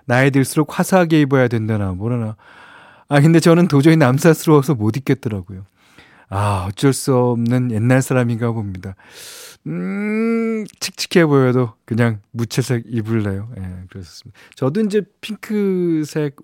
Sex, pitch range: male, 110-170 Hz